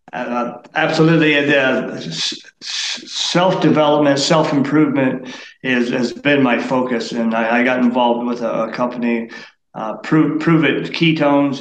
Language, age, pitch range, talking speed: English, 40-59, 120-150 Hz, 135 wpm